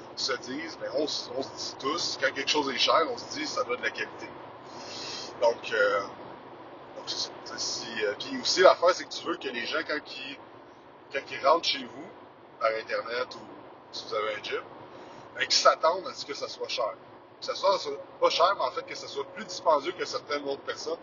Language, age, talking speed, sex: French, 30-49, 225 wpm, male